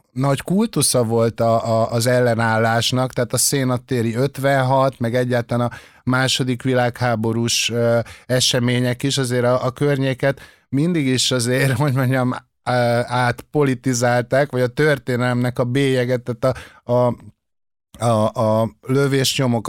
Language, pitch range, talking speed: Hungarian, 120-135 Hz, 120 wpm